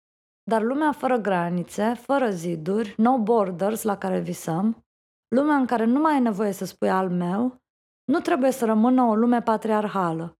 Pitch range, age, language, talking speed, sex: 200-250 Hz, 20-39, Romanian, 165 wpm, female